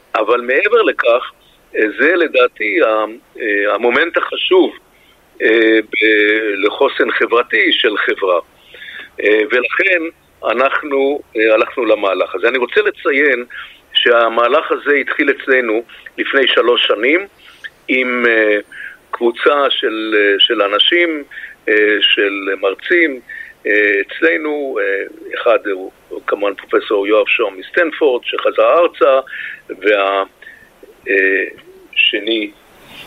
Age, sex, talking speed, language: 50-69, male, 80 wpm, Hebrew